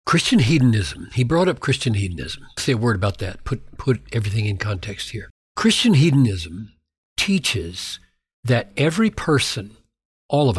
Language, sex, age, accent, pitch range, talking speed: English, male, 60-79, American, 100-155 Hz, 145 wpm